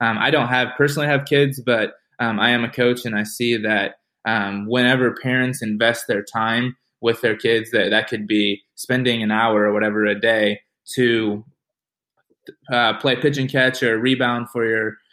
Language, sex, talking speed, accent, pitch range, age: English, male, 185 wpm, American, 110-135 Hz, 20-39